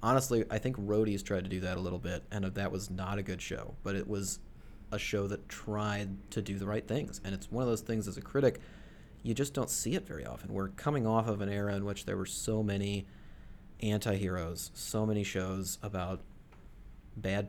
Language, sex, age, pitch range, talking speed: English, male, 30-49, 95-105 Hz, 220 wpm